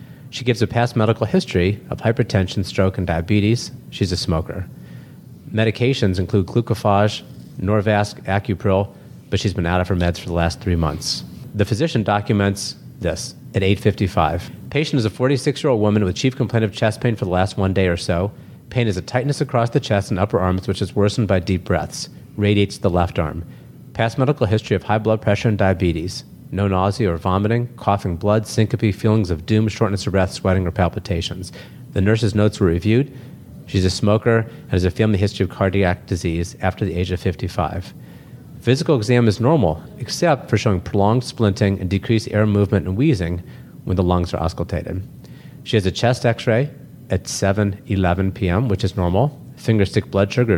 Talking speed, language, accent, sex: 185 wpm, English, American, male